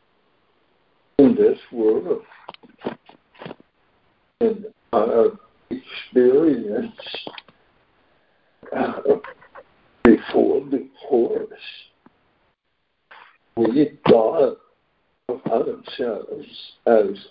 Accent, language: American, English